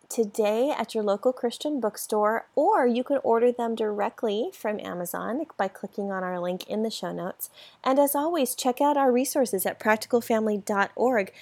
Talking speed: 170 wpm